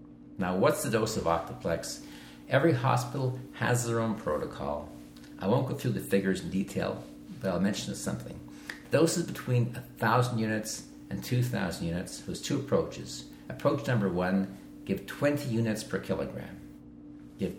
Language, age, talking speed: English, 60-79, 145 wpm